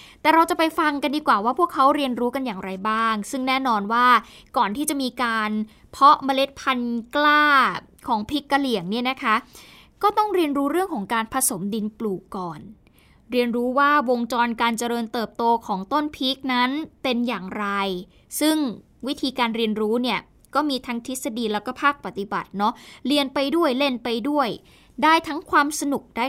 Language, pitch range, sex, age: Thai, 225-290 Hz, female, 20-39